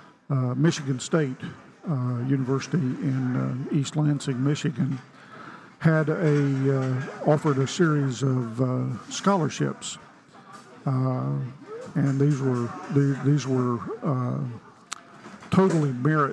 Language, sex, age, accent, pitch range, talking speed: English, male, 50-69, American, 130-150 Hz, 105 wpm